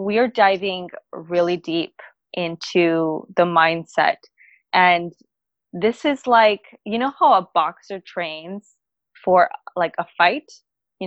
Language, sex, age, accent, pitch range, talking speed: English, female, 20-39, American, 175-215 Hz, 125 wpm